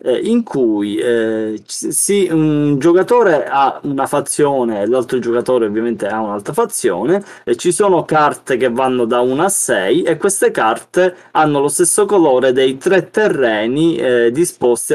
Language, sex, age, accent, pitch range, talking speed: Italian, male, 20-39, native, 125-180 Hz, 155 wpm